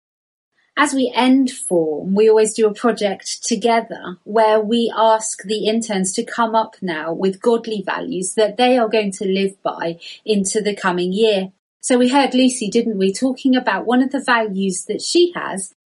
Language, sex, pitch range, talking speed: English, female, 195-240 Hz, 180 wpm